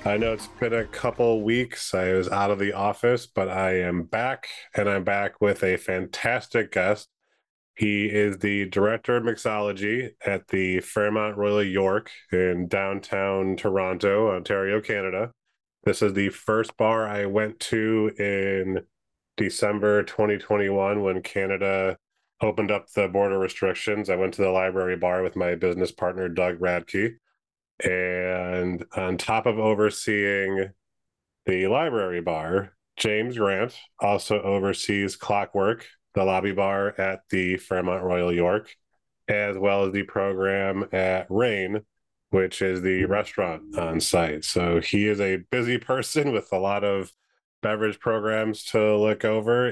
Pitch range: 95-105 Hz